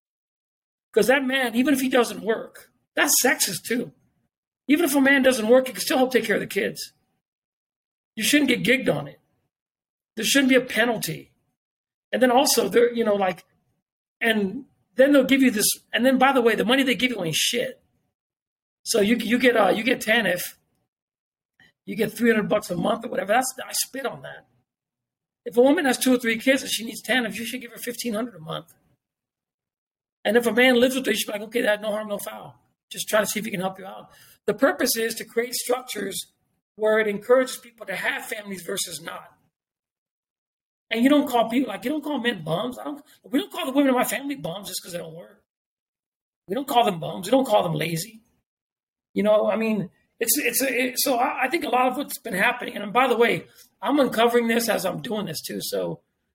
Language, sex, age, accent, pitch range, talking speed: English, male, 50-69, American, 210-260 Hz, 225 wpm